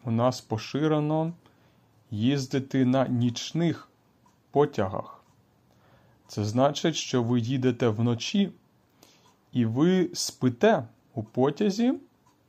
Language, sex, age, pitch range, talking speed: Ukrainian, male, 30-49, 115-150 Hz, 85 wpm